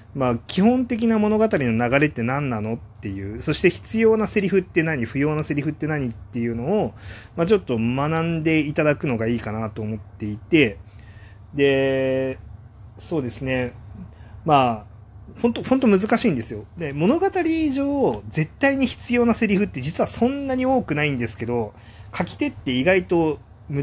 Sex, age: male, 30-49